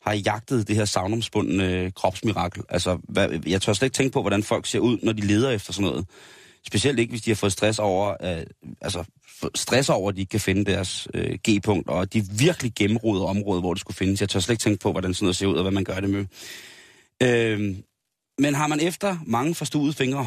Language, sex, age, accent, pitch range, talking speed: Danish, male, 30-49, native, 100-135 Hz, 235 wpm